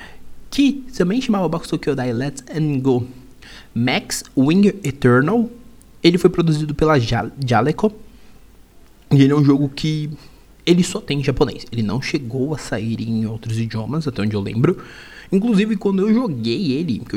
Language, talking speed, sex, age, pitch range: Portuguese, 160 wpm, male, 20-39, 115-170 Hz